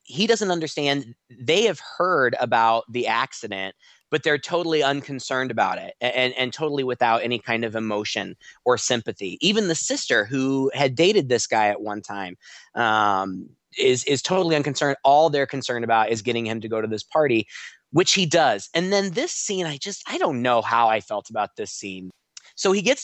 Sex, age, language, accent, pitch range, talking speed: male, 20-39, English, American, 110-145 Hz, 195 wpm